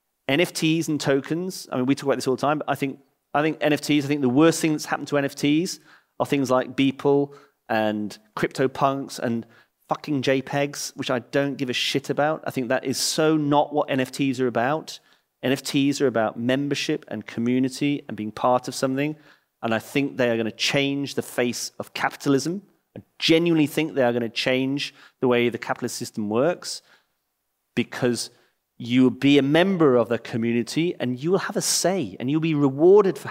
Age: 30-49